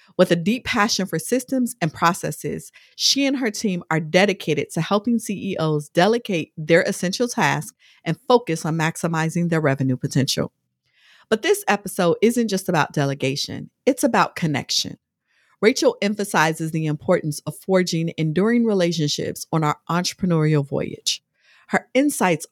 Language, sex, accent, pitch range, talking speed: English, female, American, 155-195 Hz, 140 wpm